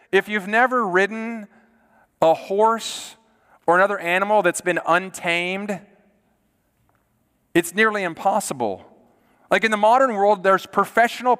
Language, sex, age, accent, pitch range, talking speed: English, male, 40-59, American, 150-200 Hz, 115 wpm